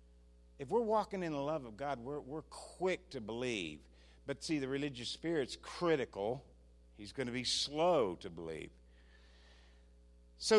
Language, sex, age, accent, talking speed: English, male, 50-69, American, 155 wpm